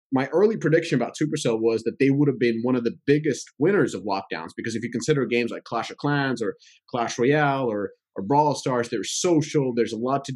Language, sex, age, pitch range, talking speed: English, male, 30-49, 120-145 Hz, 230 wpm